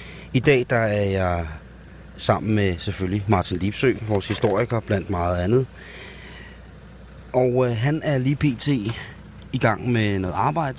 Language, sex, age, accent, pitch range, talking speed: Danish, male, 30-49, native, 100-120 Hz, 145 wpm